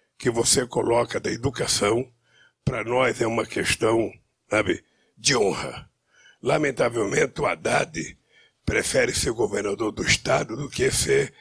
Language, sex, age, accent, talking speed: Portuguese, male, 60-79, Brazilian, 120 wpm